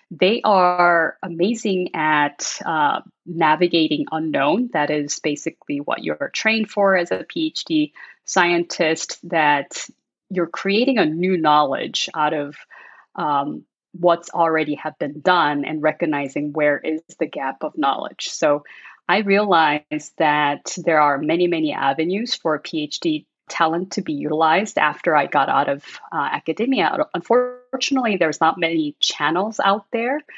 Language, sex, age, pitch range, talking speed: English, female, 30-49, 150-195 Hz, 140 wpm